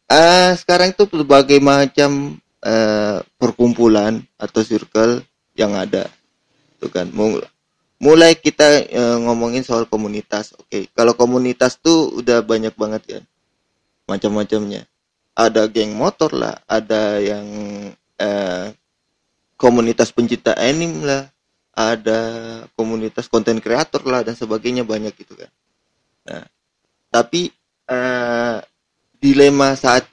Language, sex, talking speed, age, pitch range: Indonesian, male, 110 wpm, 20-39, 110-130 Hz